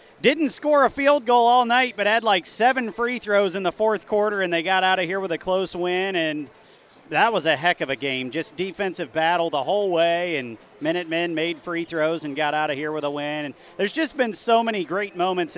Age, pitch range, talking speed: 40-59, 140-185 Hz, 245 wpm